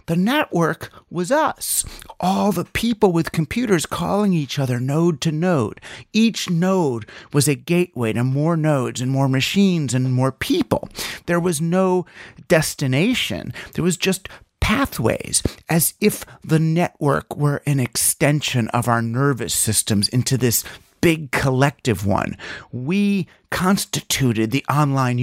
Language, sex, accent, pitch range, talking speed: English, male, American, 140-195 Hz, 135 wpm